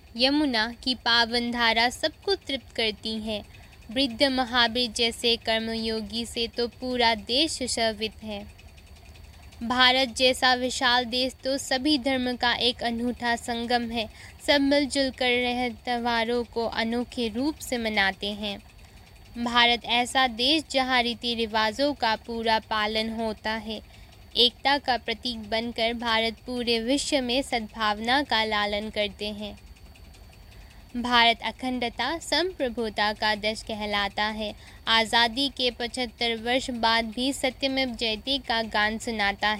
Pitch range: 220-255 Hz